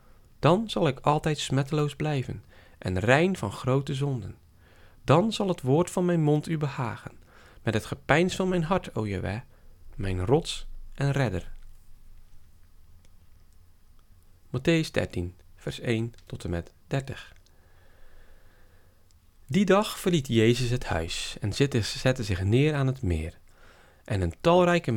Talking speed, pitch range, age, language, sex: 135 wpm, 90-135 Hz, 40-59, Dutch, male